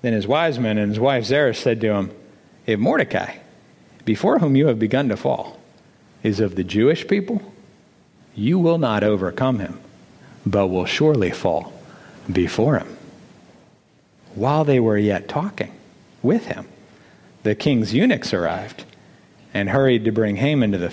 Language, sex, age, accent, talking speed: English, male, 50-69, American, 155 wpm